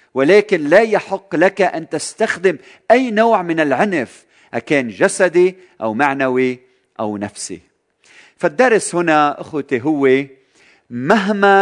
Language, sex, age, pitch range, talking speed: Arabic, male, 50-69, 150-200 Hz, 110 wpm